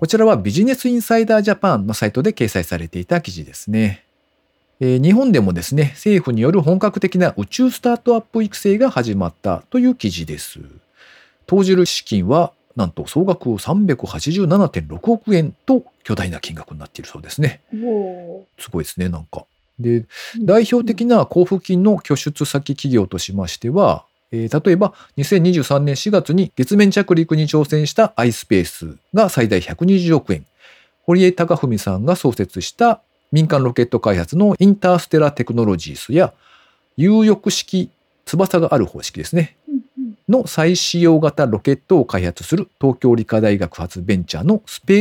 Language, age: Japanese, 40-59